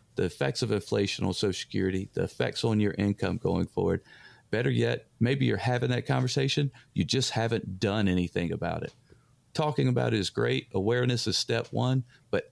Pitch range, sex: 105-130 Hz, male